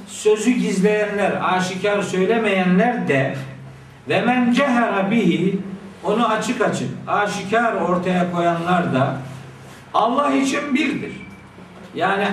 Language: Turkish